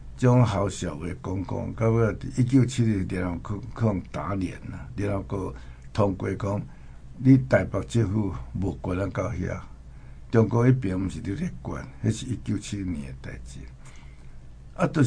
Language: Chinese